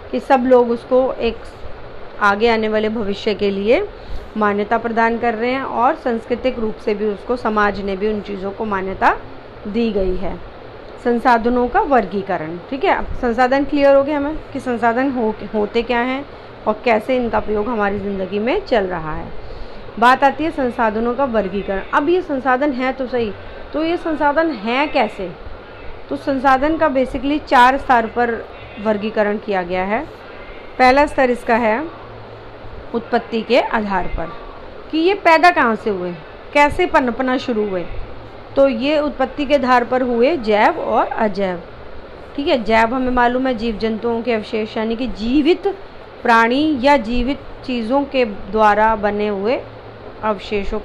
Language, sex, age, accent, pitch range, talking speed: Hindi, female, 40-59, native, 215-265 Hz, 160 wpm